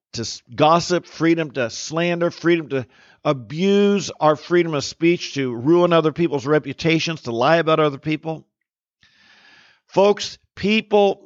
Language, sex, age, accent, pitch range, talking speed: English, male, 50-69, American, 150-180 Hz, 130 wpm